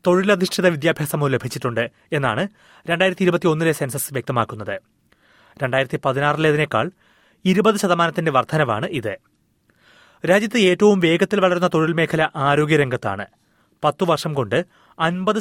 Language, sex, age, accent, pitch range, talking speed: Malayalam, male, 30-49, native, 135-180 Hz, 60 wpm